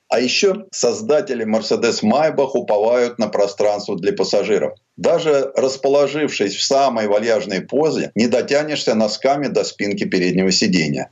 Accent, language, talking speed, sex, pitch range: native, Russian, 125 wpm, male, 115-185 Hz